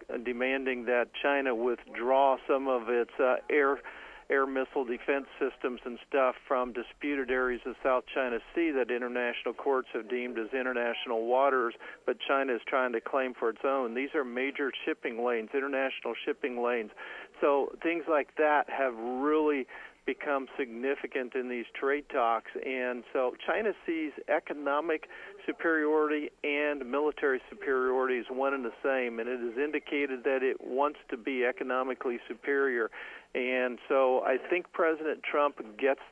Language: English